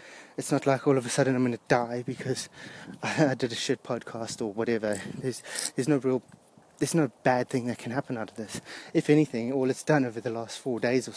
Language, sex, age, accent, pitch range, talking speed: English, male, 20-39, British, 120-140 Hz, 235 wpm